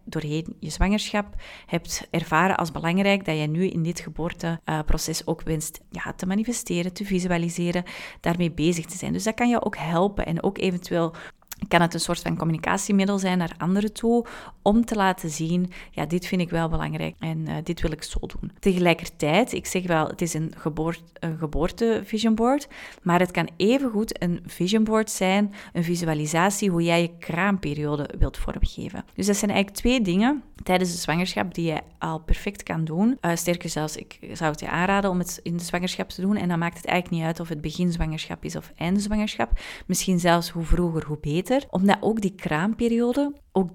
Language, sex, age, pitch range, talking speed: Dutch, female, 30-49, 165-200 Hz, 190 wpm